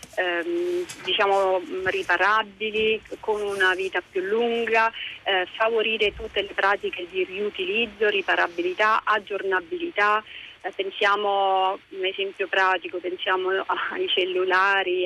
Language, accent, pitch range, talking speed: Italian, native, 185-230 Hz, 95 wpm